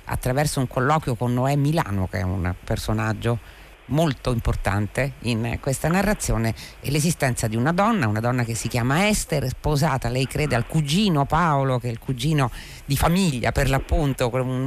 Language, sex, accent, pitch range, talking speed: Italian, female, native, 120-165 Hz, 170 wpm